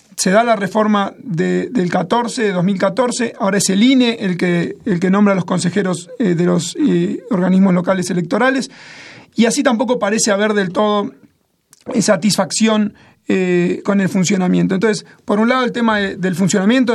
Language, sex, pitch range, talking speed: Spanish, male, 190-225 Hz, 175 wpm